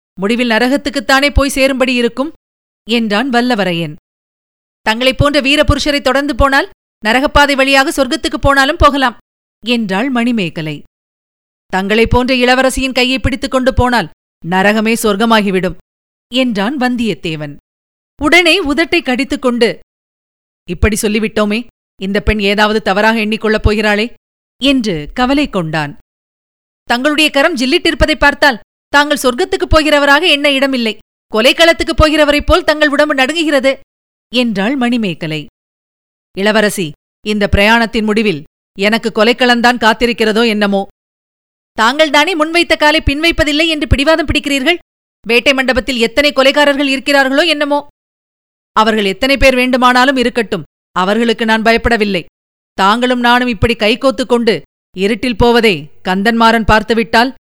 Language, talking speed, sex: Tamil, 105 wpm, female